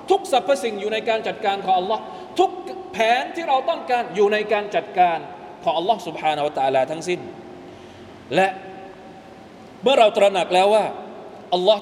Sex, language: male, Thai